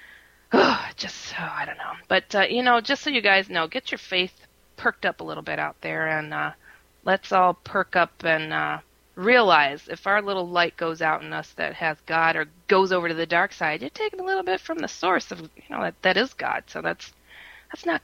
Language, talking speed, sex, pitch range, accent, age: English, 240 wpm, female, 165-215 Hz, American, 30-49